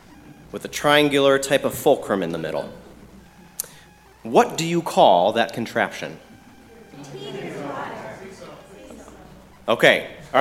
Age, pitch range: 30-49, 140-190 Hz